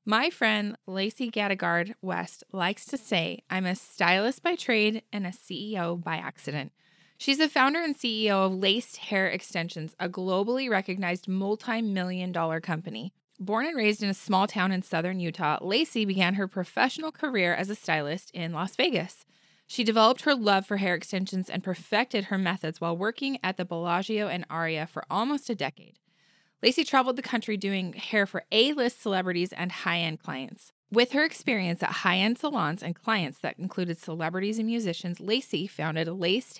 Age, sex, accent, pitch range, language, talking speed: 20-39, female, American, 175-225 Hz, English, 170 wpm